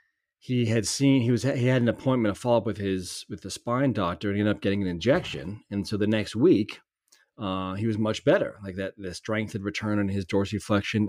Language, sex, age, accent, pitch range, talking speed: English, male, 30-49, American, 100-115 Hz, 235 wpm